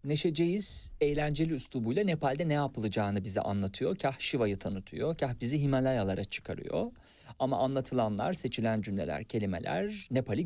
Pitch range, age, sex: 115-145 Hz, 40-59, male